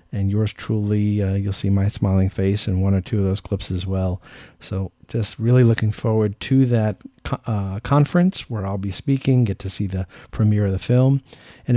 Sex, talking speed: male, 205 wpm